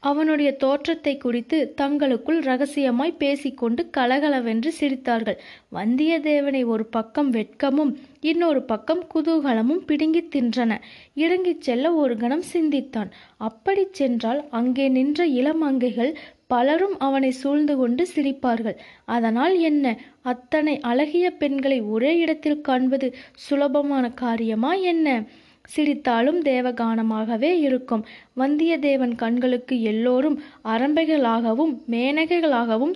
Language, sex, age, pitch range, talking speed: Tamil, female, 20-39, 245-305 Hz, 90 wpm